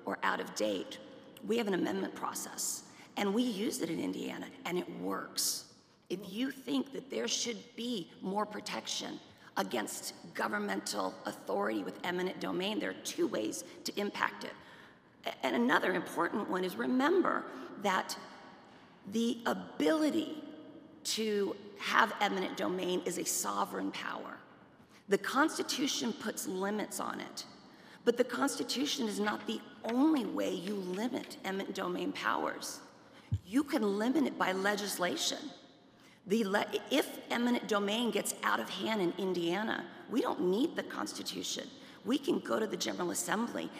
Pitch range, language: 200-275 Hz, English